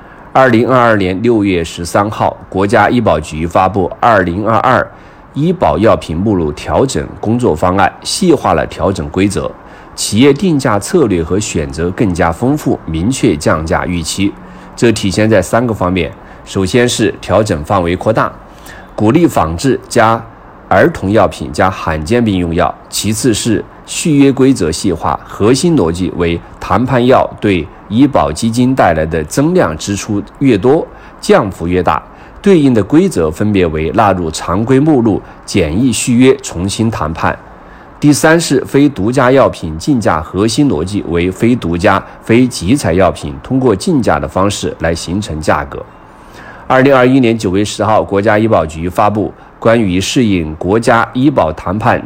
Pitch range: 85-115 Hz